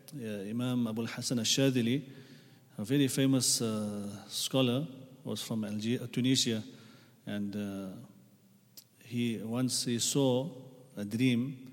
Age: 40-59